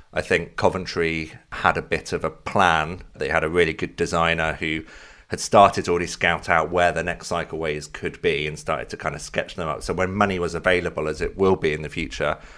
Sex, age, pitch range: male, 30-49, 80-85 Hz